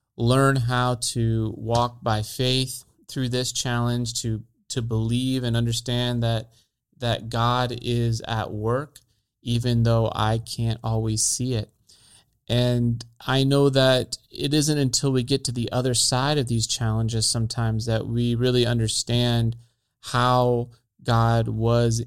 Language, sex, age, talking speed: English, male, 30-49, 140 wpm